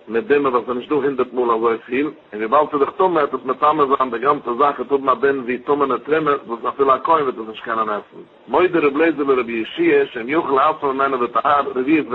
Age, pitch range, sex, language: 50-69, 130-160 Hz, male, English